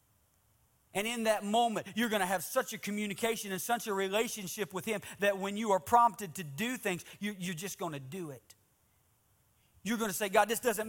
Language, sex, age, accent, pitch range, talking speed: English, male, 40-59, American, 115-190 Hz, 210 wpm